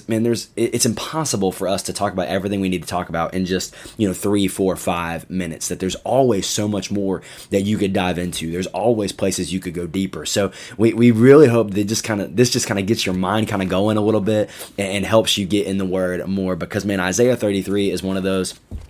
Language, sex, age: English, male, 20-39